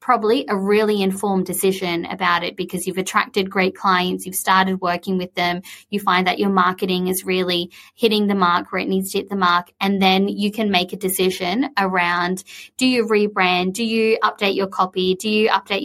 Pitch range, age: 185-220 Hz, 20-39